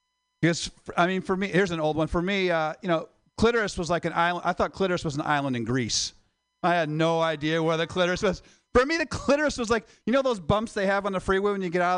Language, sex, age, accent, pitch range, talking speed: English, male, 40-59, American, 150-220 Hz, 270 wpm